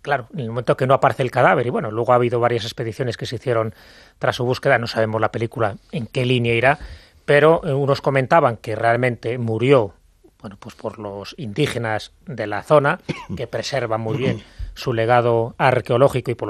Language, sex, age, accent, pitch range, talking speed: English, male, 30-49, Spanish, 115-140 Hz, 195 wpm